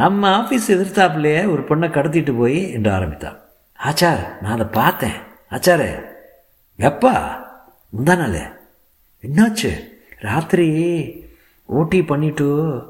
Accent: native